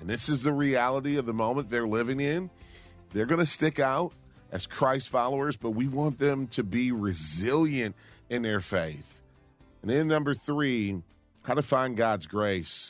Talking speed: 175 wpm